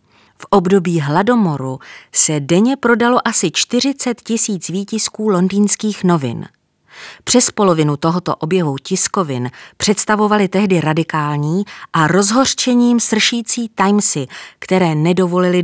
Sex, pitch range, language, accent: female, 160-205 Hz, Czech, native